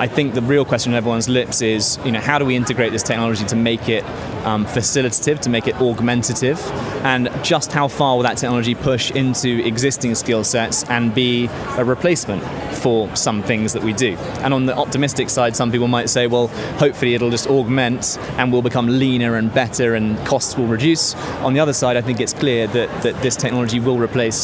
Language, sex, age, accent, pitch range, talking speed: English, male, 20-39, British, 115-130 Hz, 210 wpm